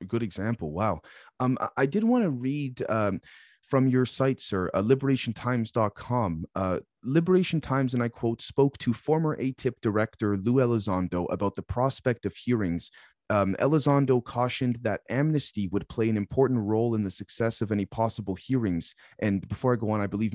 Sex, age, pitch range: male, 30-49, 105-130 Hz